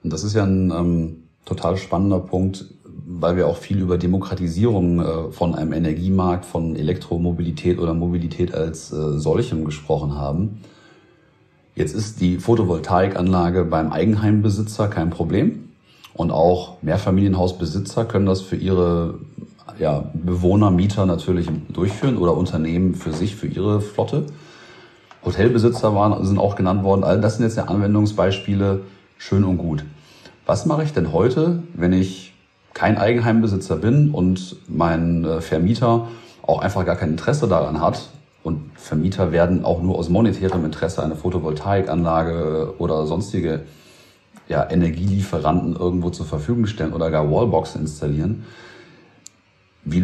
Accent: German